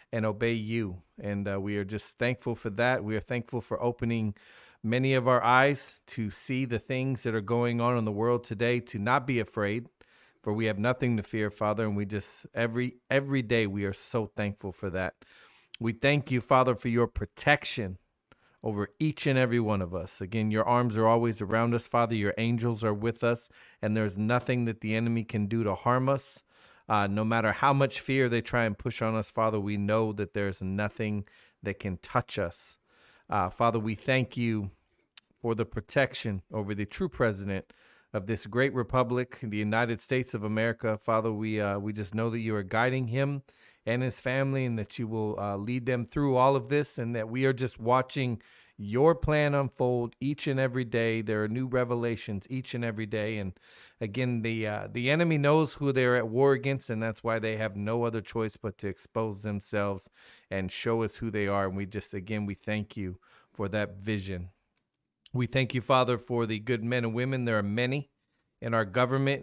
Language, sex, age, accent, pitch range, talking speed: English, male, 40-59, American, 105-125 Hz, 205 wpm